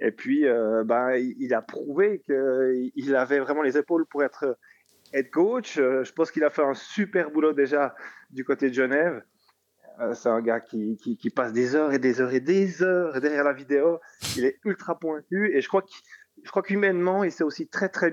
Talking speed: 205 wpm